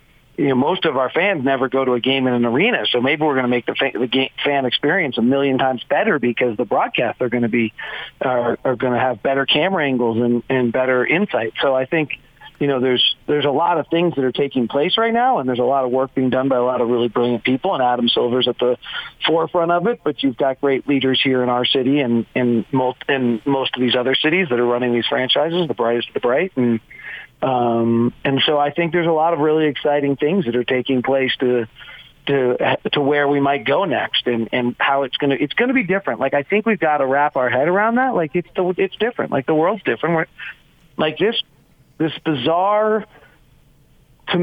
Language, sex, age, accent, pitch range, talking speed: English, male, 40-59, American, 125-155 Hz, 235 wpm